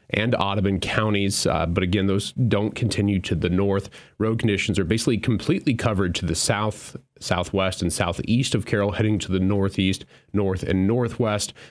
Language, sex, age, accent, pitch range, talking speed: English, male, 30-49, American, 95-115 Hz, 170 wpm